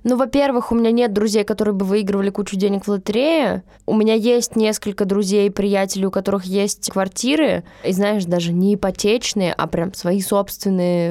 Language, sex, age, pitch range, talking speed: Russian, female, 10-29, 185-220 Hz, 175 wpm